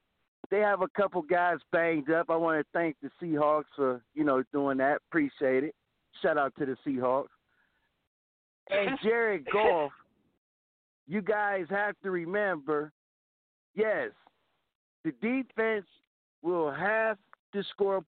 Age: 50-69